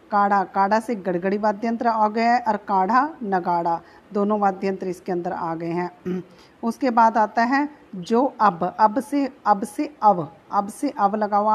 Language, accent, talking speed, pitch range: Hindi, native, 95 wpm, 190-235 Hz